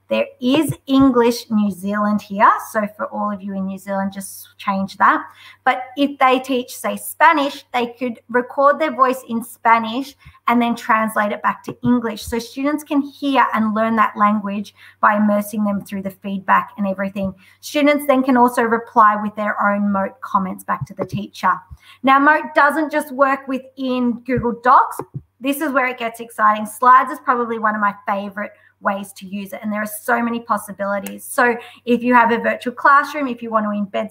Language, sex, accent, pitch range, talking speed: English, female, Australian, 205-265 Hz, 195 wpm